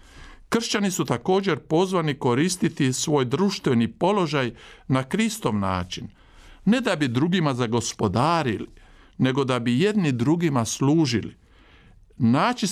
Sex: male